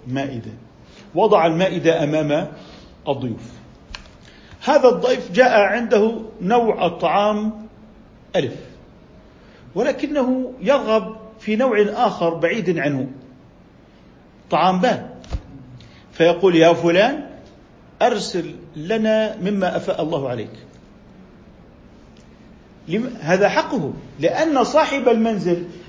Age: 50-69